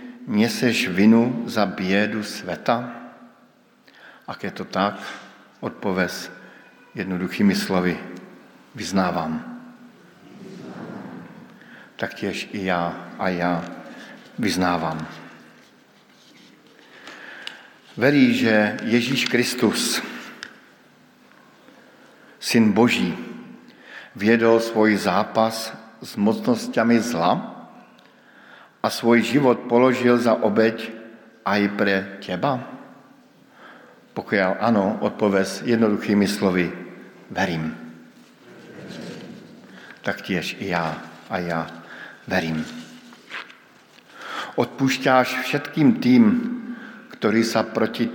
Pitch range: 100-135 Hz